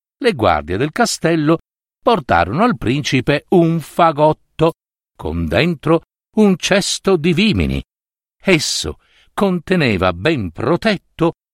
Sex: male